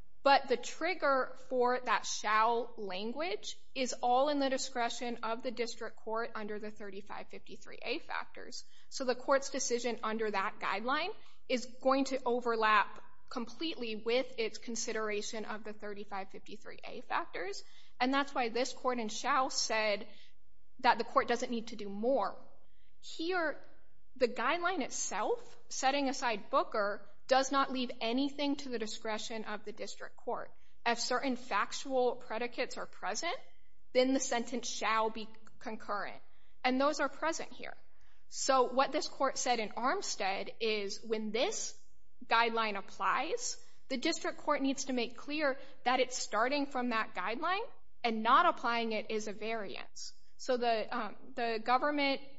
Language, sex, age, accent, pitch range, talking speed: English, female, 20-39, American, 220-270 Hz, 145 wpm